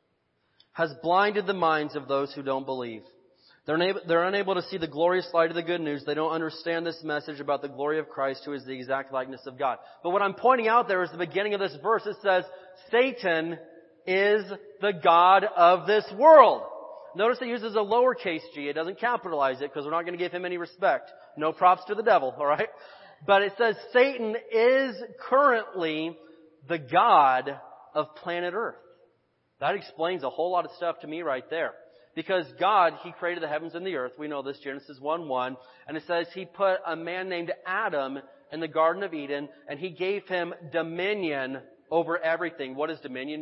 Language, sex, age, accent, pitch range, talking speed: English, male, 30-49, American, 150-190 Hz, 200 wpm